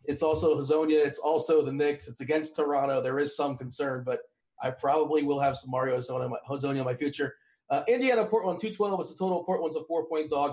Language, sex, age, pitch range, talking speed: English, male, 40-59, 145-180 Hz, 230 wpm